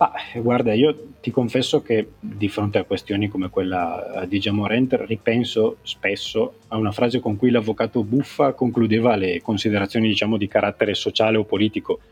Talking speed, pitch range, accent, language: 160 wpm, 95-115 Hz, native, Italian